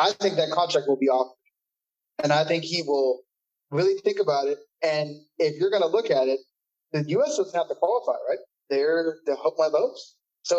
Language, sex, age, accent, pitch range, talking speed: English, male, 20-39, American, 150-185 Hz, 210 wpm